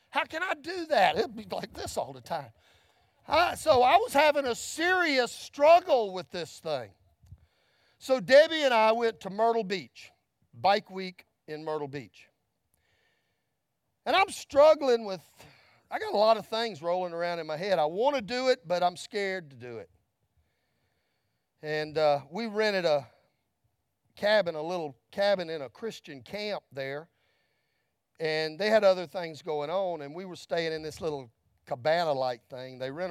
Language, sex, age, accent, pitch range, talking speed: English, male, 40-59, American, 140-210 Hz, 170 wpm